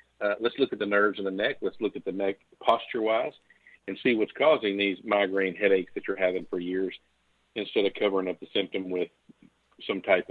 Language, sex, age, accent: English, male, 50-69, American